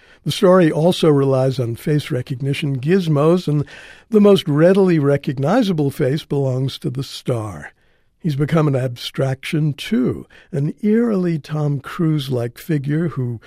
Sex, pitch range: male, 130-160 Hz